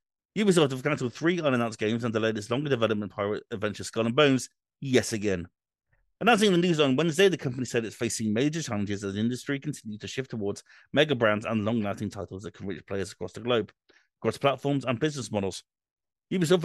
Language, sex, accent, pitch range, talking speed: English, male, British, 105-135 Hz, 200 wpm